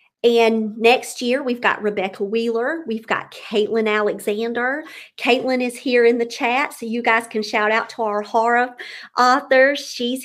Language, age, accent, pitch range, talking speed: English, 50-69, American, 220-265 Hz, 165 wpm